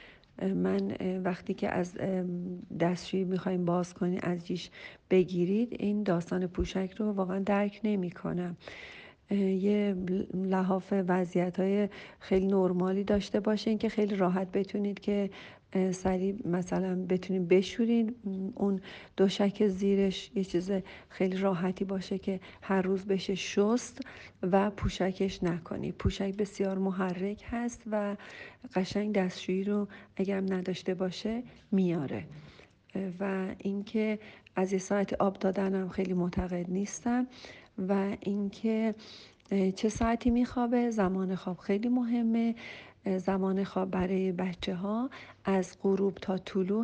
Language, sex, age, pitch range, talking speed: Persian, female, 40-59, 185-210 Hz, 115 wpm